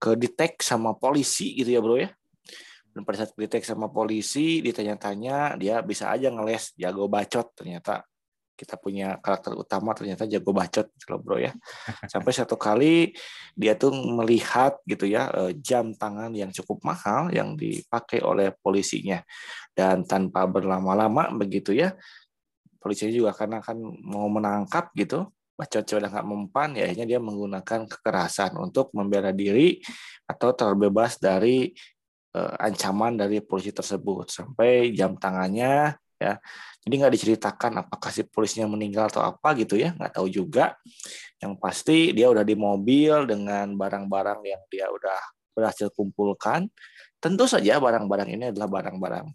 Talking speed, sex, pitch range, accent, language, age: 135 wpm, male, 100-120 Hz, native, Indonesian, 20-39